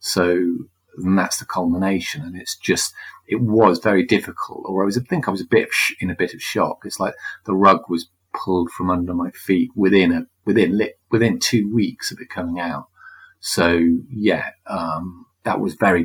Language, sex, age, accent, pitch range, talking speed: English, male, 40-59, British, 90-110 Hz, 200 wpm